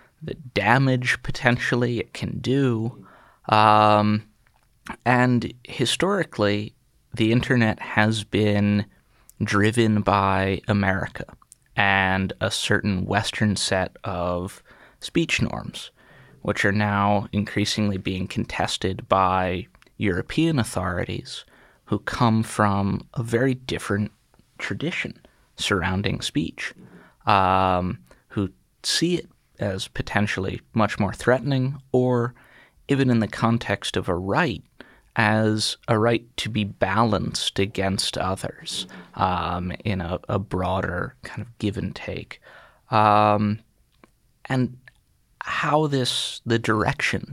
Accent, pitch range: American, 100-120 Hz